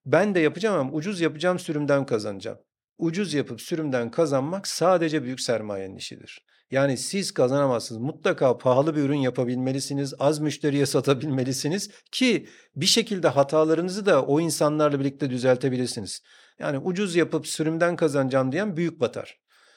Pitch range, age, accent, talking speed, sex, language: 135-175 Hz, 50-69, native, 130 wpm, male, Turkish